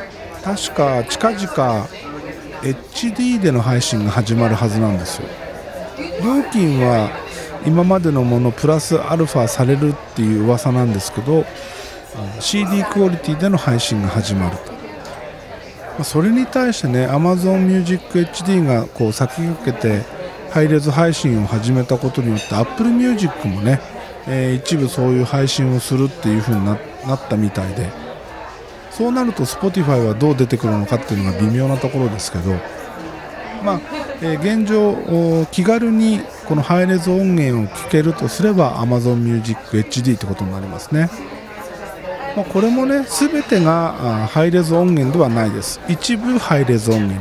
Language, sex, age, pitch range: Japanese, male, 50-69, 115-185 Hz